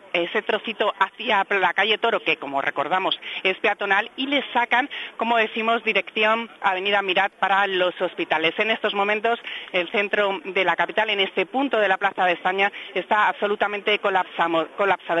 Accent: Spanish